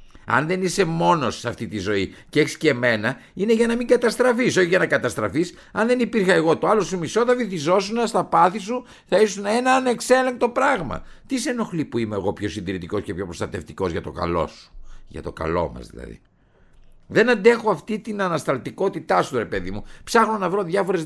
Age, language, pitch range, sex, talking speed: 50-69, Greek, 150-225 Hz, male, 205 wpm